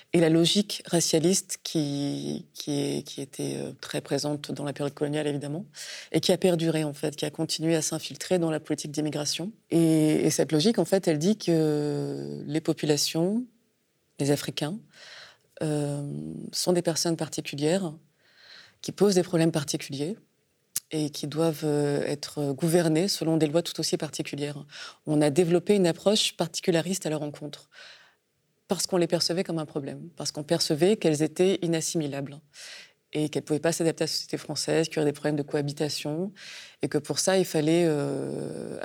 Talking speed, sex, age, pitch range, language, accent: 170 wpm, female, 20-39, 145-170 Hz, French, French